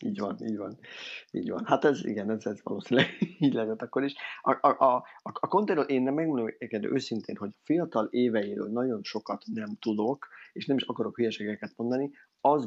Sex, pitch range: male, 105-135 Hz